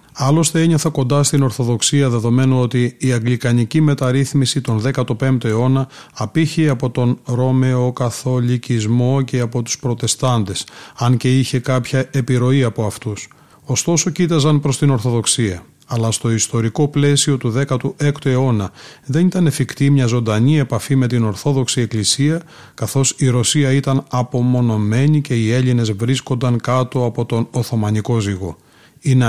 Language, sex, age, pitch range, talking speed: Greek, male, 30-49, 120-145 Hz, 135 wpm